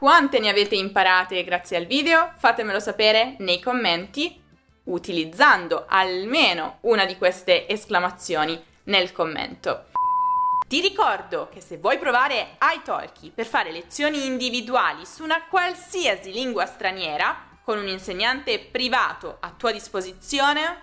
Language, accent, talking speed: Italian, native, 120 wpm